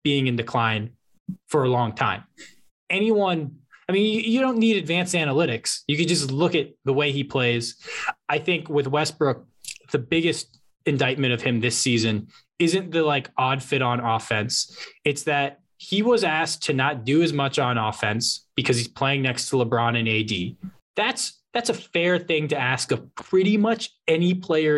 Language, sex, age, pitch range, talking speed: English, male, 20-39, 130-185 Hz, 180 wpm